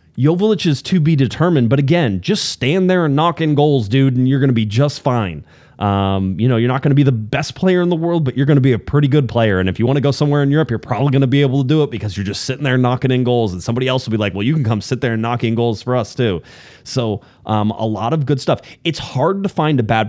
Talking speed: 305 wpm